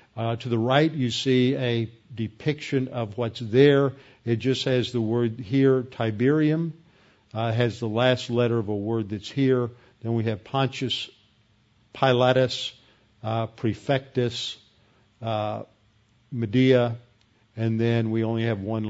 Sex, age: male, 50-69